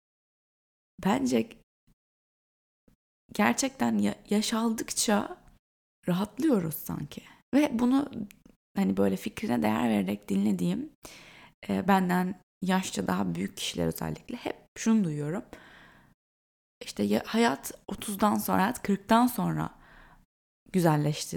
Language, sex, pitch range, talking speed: Turkish, female, 145-220 Hz, 80 wpm